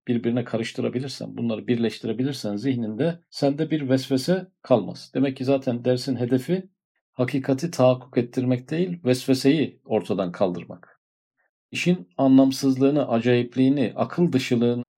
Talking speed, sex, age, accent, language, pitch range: 105 wpm, male, 50-69, native, Turkish, 120-145 Hz